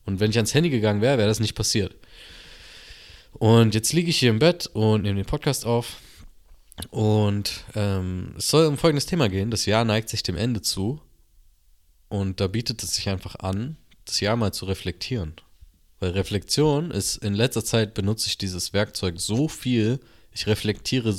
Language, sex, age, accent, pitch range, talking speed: German, male, 20-39, German, 95-120 Hz, 180 wpm